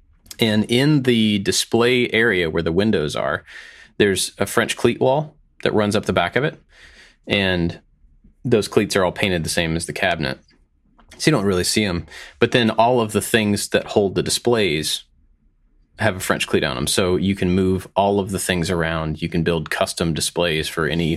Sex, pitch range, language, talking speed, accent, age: male, 80-110 Hz, English, 200 wpm, American, 30-49